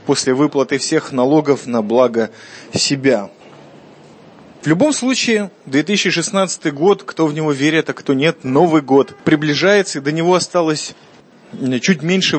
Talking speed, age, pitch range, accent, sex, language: 135 wpm, 20-39, 140-185 Hz, native, male, Russian